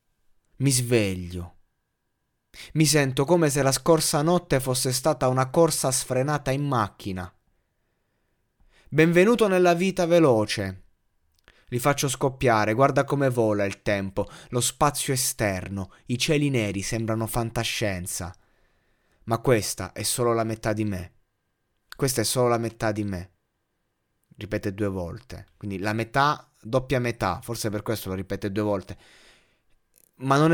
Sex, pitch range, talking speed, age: male, 105-145 Hz, 135 wpm, 20-39